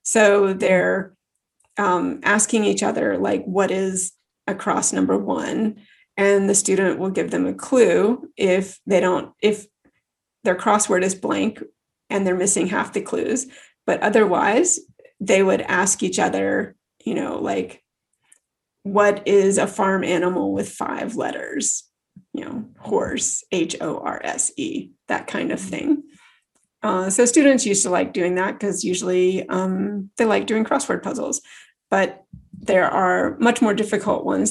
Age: 30-49